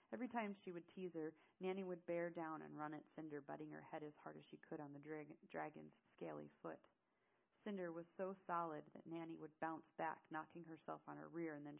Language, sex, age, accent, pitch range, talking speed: English, female, 30-49, American, 155-180 Hz, 220 wpm